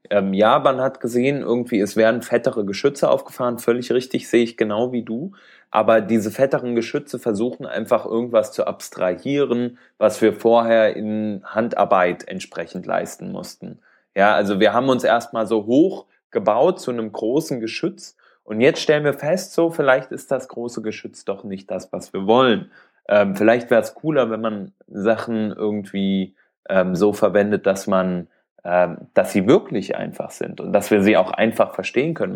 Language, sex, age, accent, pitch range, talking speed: German, male, 20-39, German, 100-120 Hz, 170 wpm